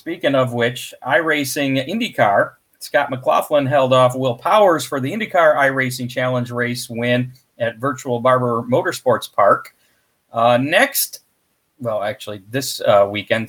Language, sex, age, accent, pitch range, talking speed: English, male, 40-59, American, 115-140 Hz, 135 wpm